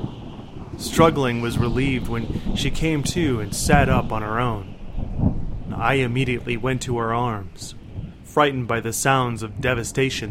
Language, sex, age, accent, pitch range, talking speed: English, male, 30-49, American, 100-125 Hz, 145 wpm